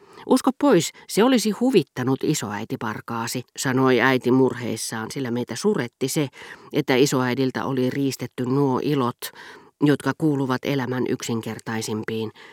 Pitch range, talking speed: 120-155 Hz, 110 wpm